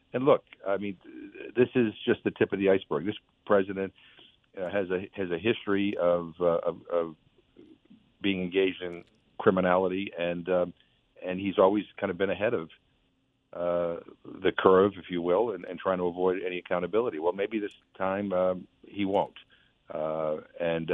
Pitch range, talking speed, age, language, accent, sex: 85-100 Hz, 170 wpm, 50-69, English, American, male